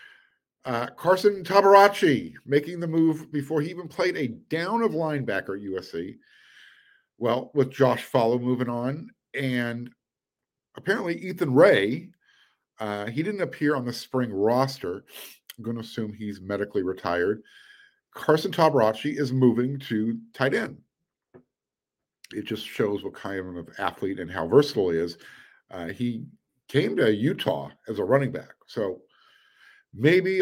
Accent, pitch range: American, 105-150 Hz